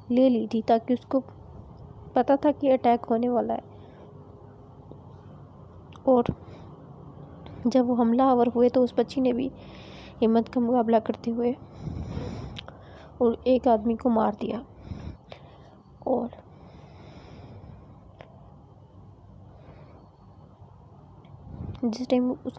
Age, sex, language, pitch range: 20-39, female, Urdu, 205-255 Hz